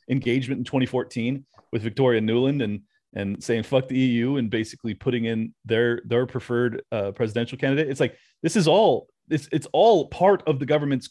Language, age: English, 30-49